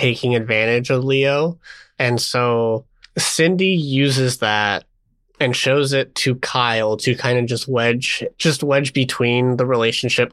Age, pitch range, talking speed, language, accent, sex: 20-39, 105-125 Hz, 140 wpm, English, American, male